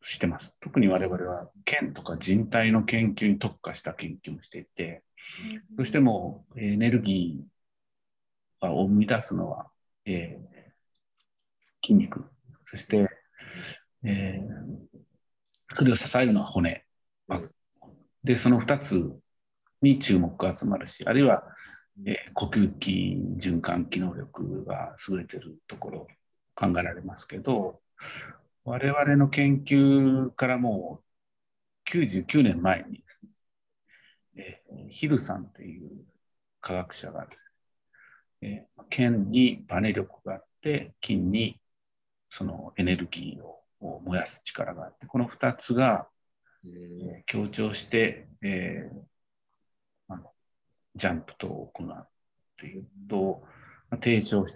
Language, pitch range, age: Japanese, 90-125 Hz, 40-59